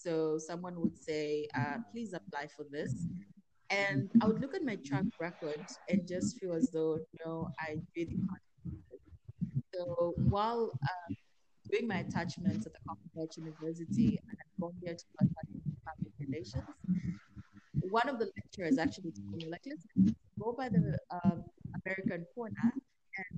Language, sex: English, female